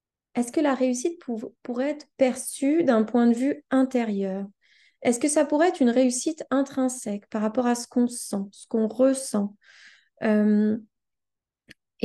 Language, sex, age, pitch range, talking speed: French, female, 20-39, 230-290 Hz, 150 wpm